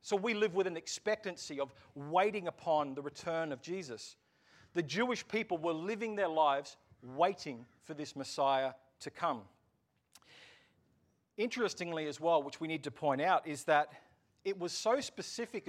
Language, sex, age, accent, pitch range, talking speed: English, male, 40-59, Australian, 145-185 Hz, 155 wpm